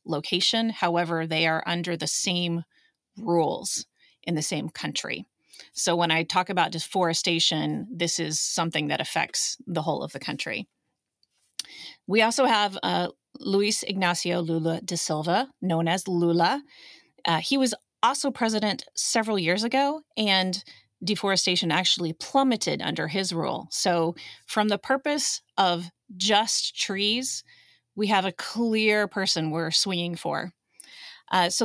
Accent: American